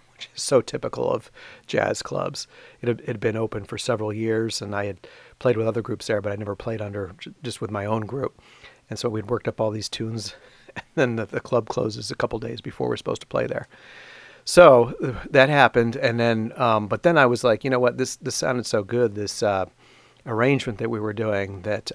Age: 40-59